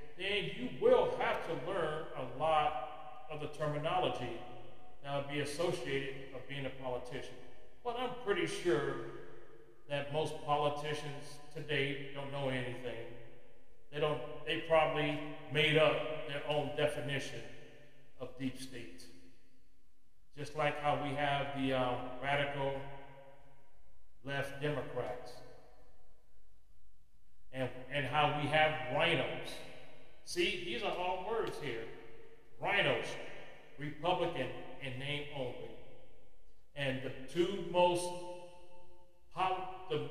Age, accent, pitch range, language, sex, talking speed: 40-59, American, 125-155 Hz, English, male, 110 wpm